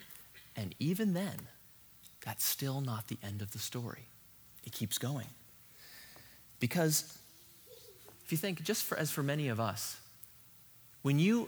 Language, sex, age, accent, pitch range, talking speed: English, male, 30-49, American, 115-160 Hz, 135 wpm